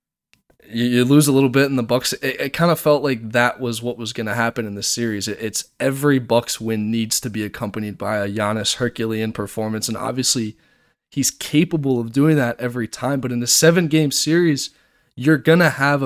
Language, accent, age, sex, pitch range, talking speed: English, American, 20-39, male, 115-130 Hz, 210 wpm